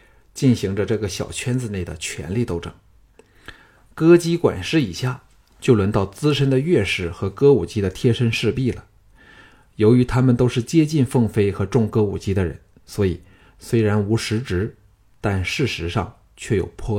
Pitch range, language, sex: 100-130 Hz, Chinese, male